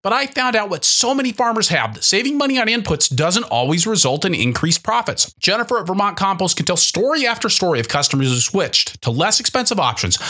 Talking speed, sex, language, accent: 215 wpm, male, English, American